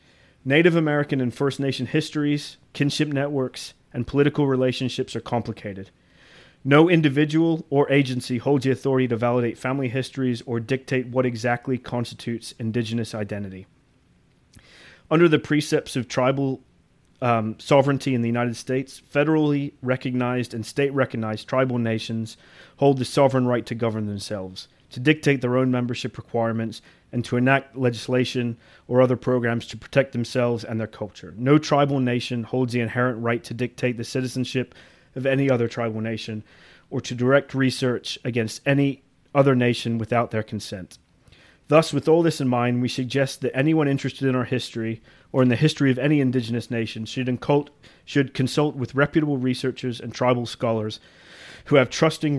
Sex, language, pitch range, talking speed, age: male, English, 115-135 Hz, 155 wpm, 30-49